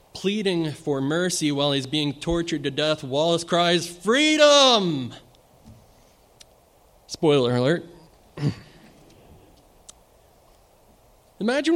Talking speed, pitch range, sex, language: 75 wpm, 130-165 Hz, male, English